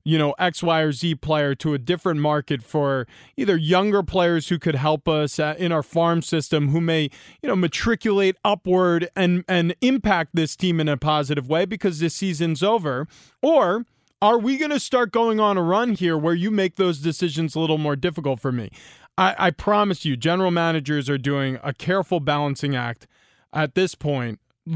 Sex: male